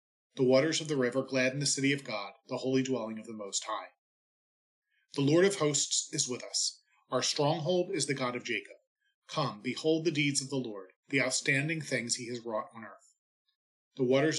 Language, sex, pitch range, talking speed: English, male, 125-155 Hz, 200 wpm